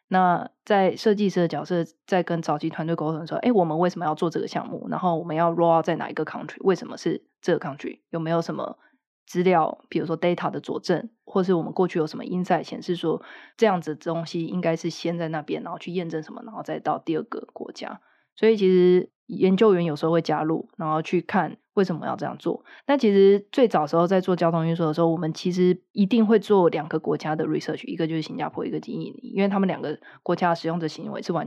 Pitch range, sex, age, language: 165-190 Hz, female, 20-39, Chinese